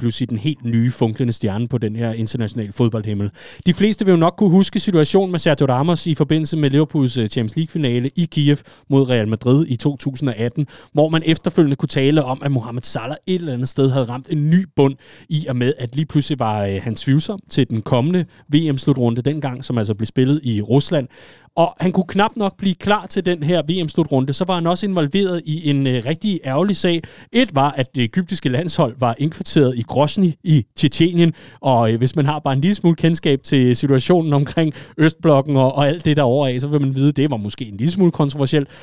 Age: 30-49